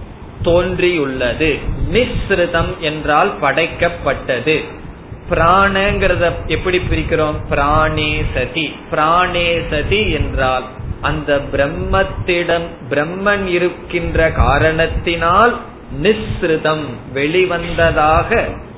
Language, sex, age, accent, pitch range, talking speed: Tamil, male, 20-39, native, 135-180 Hz, 35 wpm